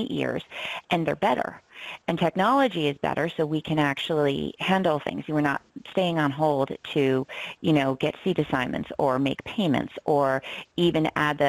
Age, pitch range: 40-59, 135-170 Hz